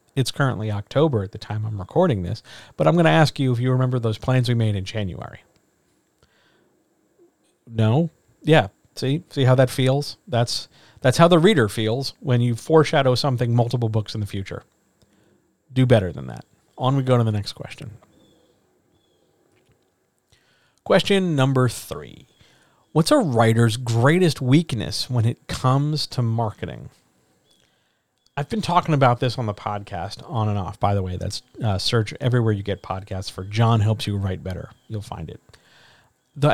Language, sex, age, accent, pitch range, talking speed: English, male, 40-59, American, 110-135 Hz, 165 wpm